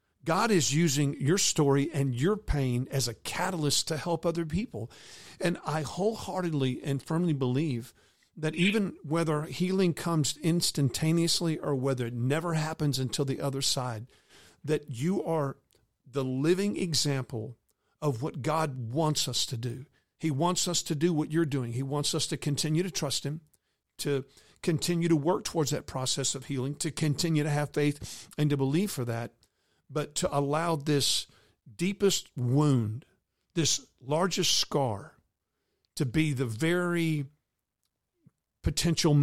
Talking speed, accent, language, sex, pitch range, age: 150 wpm, American, English, male, 135-165 Hz, 50-69